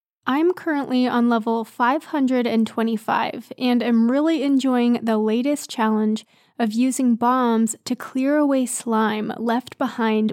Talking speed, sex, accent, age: 120 wpm, female, American, 20-39